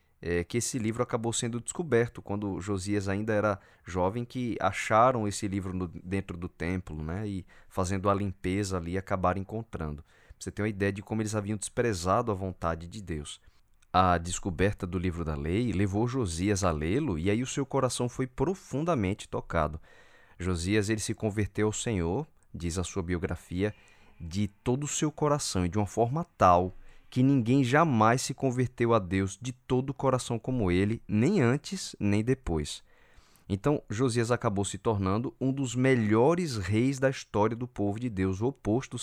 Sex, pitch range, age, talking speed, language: male, 95-120 Hz, 20-39, 175 wpm, Portuguese